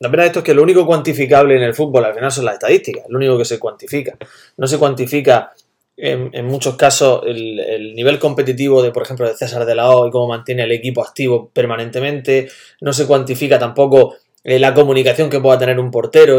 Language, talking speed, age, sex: Spanish, 215 wpm, 20-39, male